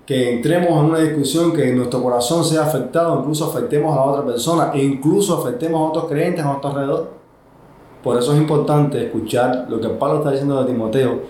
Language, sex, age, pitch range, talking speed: Spanish, male, 20-39, 125-160 Hz, 195 wpm